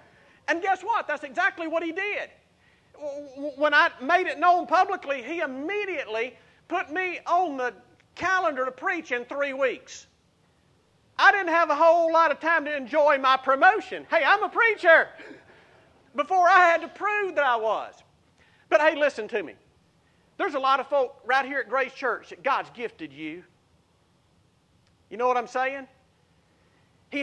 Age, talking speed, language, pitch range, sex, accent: 40-59, 165 wpm, English, 255-345 Hz, male, American